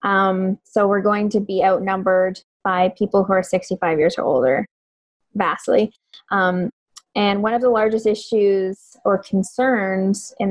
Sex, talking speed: female, 150 wpm